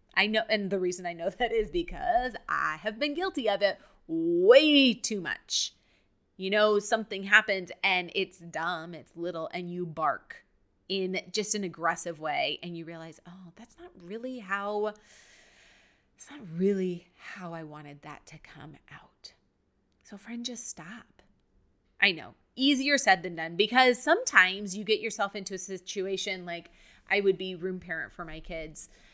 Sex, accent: female, American